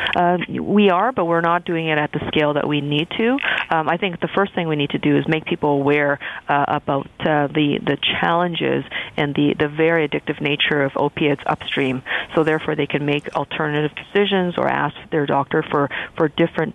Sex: female